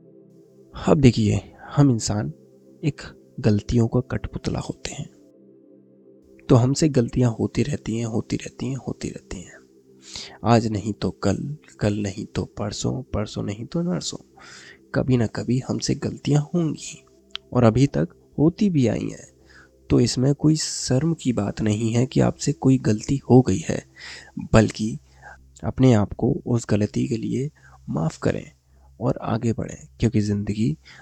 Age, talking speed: 20-39, 150 wpm